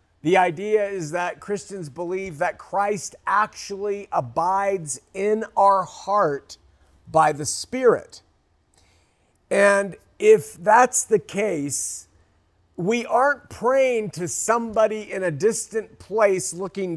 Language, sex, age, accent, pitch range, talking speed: English, male, 50-69, American, 150-210 Hz, 110 wpm